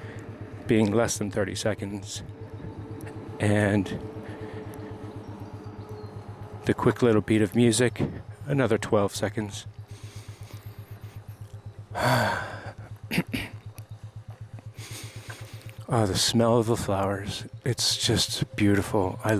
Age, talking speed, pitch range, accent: 40-59, 75 wpm, 105-130 Hz, American